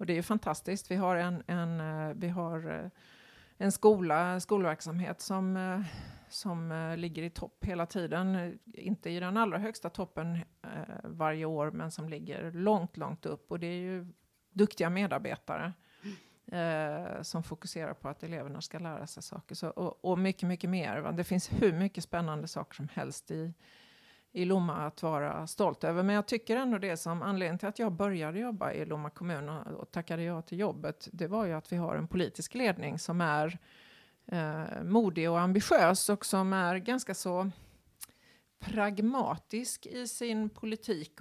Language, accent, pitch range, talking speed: Swedish, native, 165-200 Hz, 170 wpm